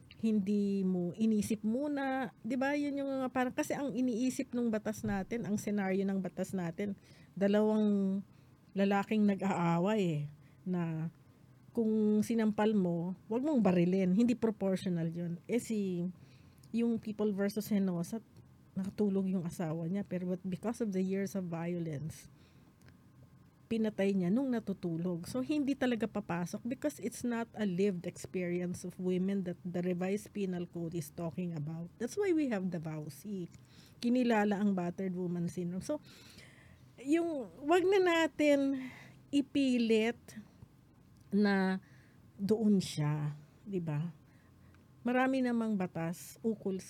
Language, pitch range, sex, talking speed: Filipino, 175-225 Hz, female, 130 wpm